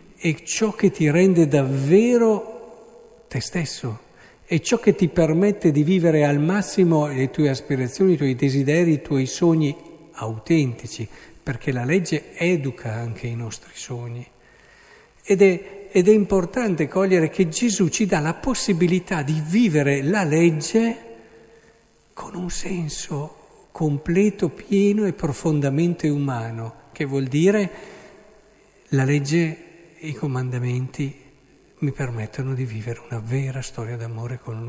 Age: 50-69